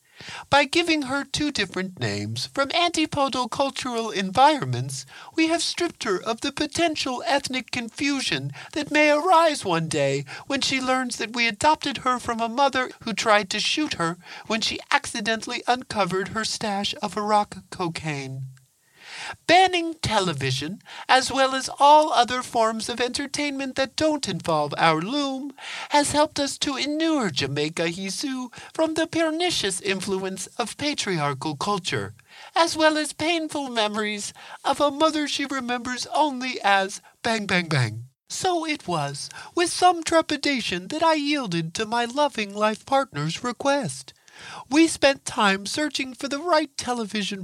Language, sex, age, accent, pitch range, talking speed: English, male, 50-69, American, 185-295 Hz, 145 wpm